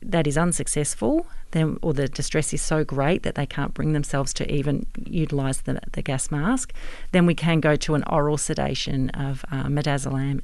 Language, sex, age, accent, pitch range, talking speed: English, female, 40-59, Australian, 140-165 Hz, 190 wpm